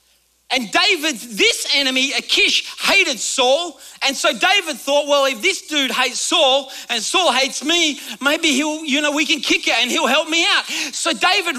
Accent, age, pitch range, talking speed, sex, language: Australian, 40-59, 260-350 Hz, 185 wpm, male, English